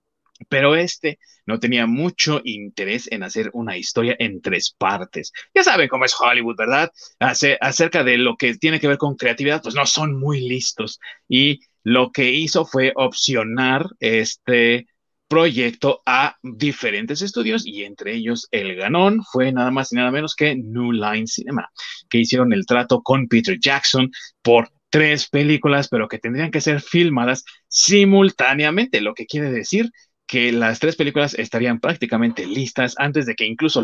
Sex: male